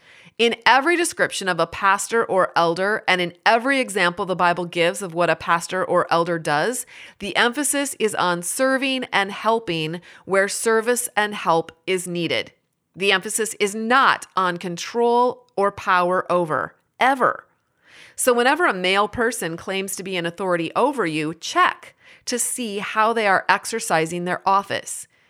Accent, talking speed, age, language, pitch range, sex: American, 155 wpm, 30-49, English, 175-235 Hz, female